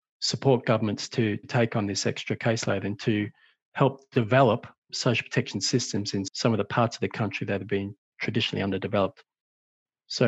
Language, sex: English, male